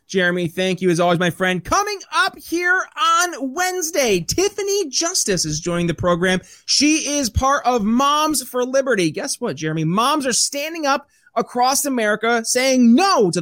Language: English